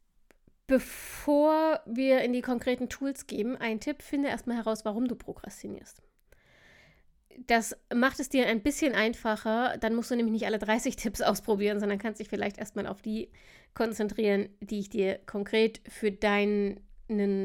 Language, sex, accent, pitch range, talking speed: German, female, German, 210-250 Hz, 155 wpm